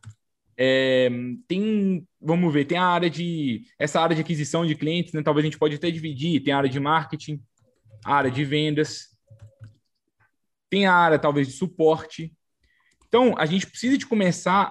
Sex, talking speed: male, 170 wpm